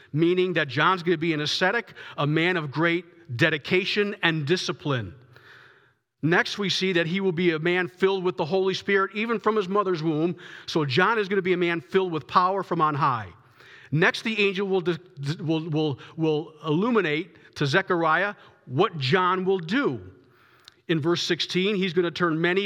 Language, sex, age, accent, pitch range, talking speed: English, male, 40-59, American, 155-185 Hz, 180 wpm